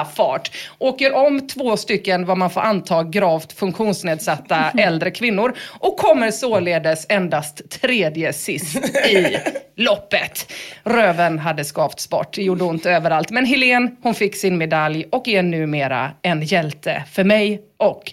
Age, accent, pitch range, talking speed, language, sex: 30-49, Swedish, 170-240 Hz, 140 wpm, English, female